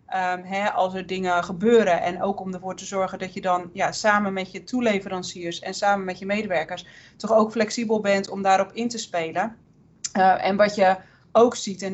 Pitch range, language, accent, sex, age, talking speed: 185-210 Hz, Dutch, Dutch, female, 30-49, 190 wpm